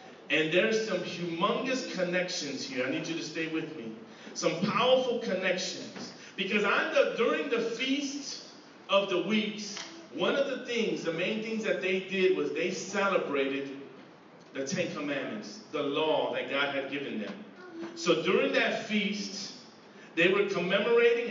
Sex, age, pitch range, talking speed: male, 40-59, 170-235 Hz, 150 wpm